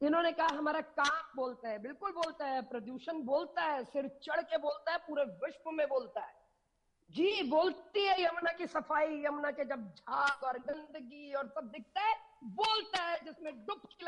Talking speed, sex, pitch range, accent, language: 180 wpm, female, 290-360 Hz, native, Hindi